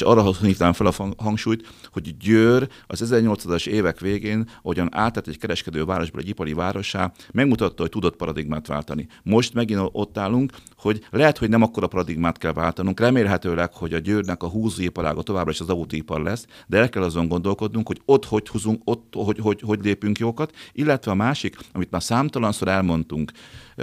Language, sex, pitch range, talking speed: Hungarian, male, 85-110 Hz, 180 wpm